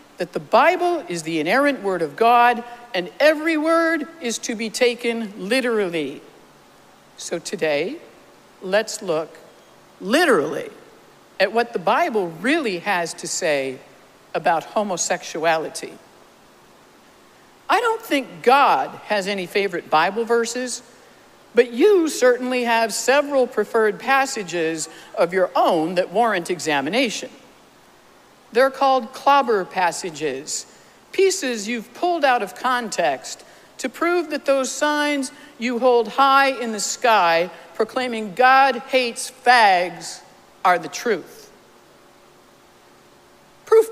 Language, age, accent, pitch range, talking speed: English, 60-79, American, 190-275 Hz, 115 wpm